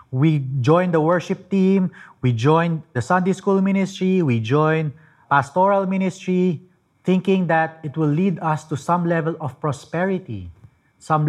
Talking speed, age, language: 145 wpm, 30-49, English